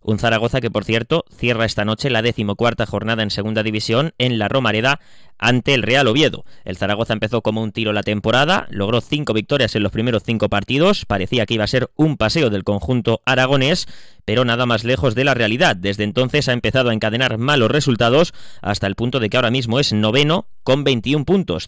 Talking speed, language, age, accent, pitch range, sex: 205 wpm, Spanish, 20-39, Spanish, 105-130 Hz, male